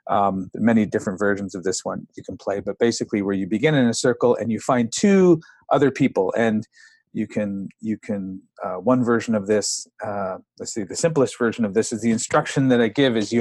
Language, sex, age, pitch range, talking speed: English, male, 40-59, 110-160 Hz, 225 wpm